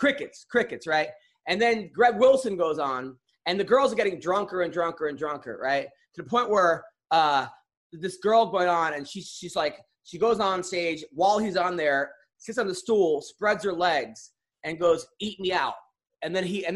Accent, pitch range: American, 170-235 Hz